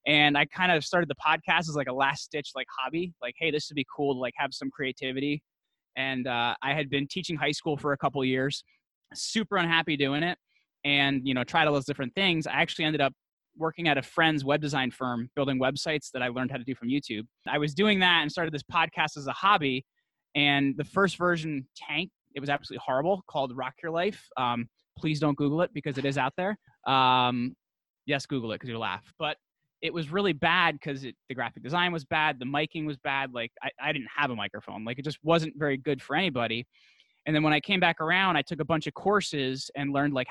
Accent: American